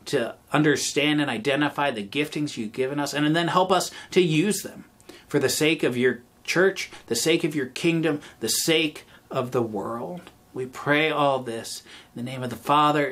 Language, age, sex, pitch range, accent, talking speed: English, 30-49, male, 115-160 Hz, American, 190 wpm